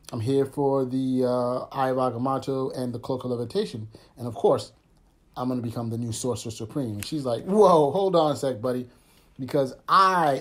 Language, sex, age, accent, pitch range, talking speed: English, male, 30-49, American, 120-140 Hz, 190 wpm